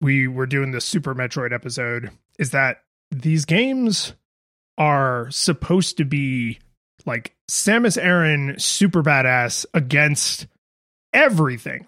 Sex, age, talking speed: male, 30-49, 110 wpm